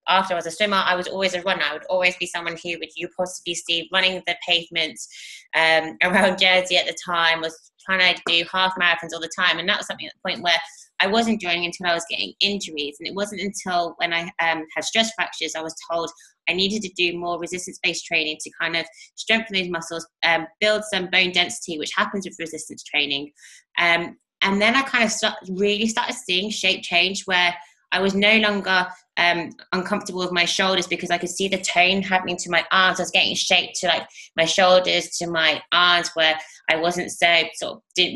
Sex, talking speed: female, 215 wpm